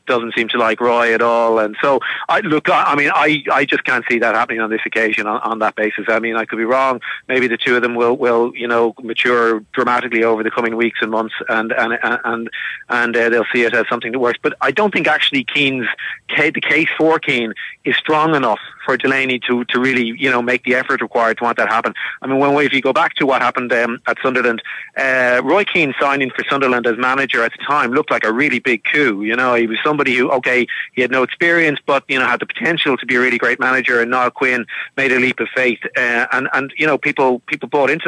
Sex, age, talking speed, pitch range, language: male, 30-49, 250 wpm, 115-130 Hz, English